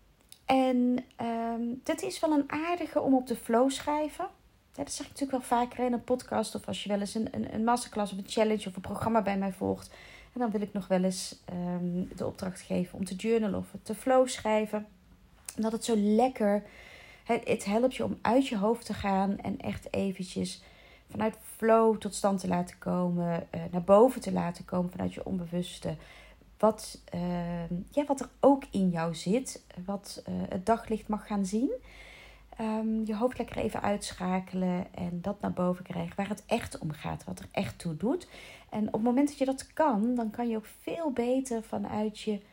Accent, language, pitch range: Dutch, Dutch, 185-240 Hz